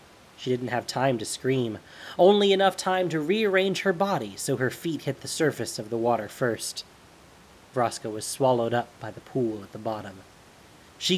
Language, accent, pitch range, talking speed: English, American, 110-150 Hz, 185 wpm